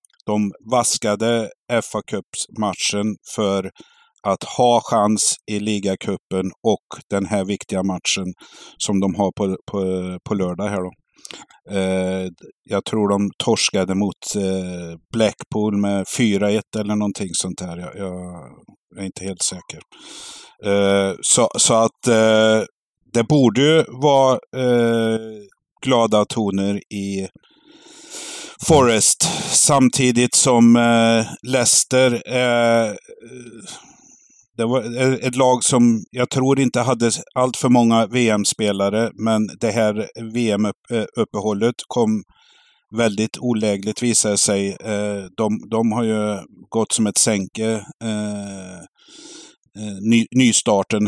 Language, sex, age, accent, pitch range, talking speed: Swedish, male, 50-69, native, 100-120 Hz, 115 wpm